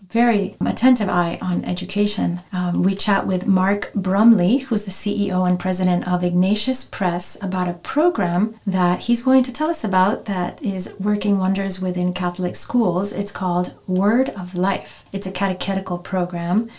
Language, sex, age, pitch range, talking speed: English, female, 30-49, 175-205 Hz, 160 wpm